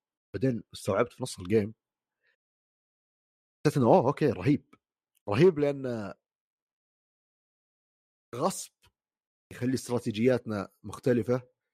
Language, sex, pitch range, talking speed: Arabic, male, 100-125 Hz, 70 wpm